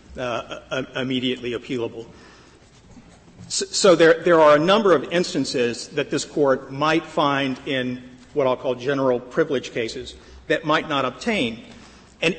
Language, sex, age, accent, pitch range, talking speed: English, male, 50-69, American, 135-170 Hz, 145 wpm